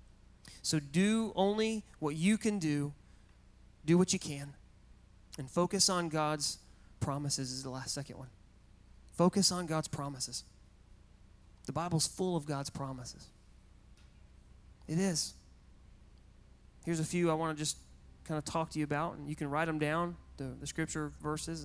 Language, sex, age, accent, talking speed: English, male, 30-49, American, 155 wpm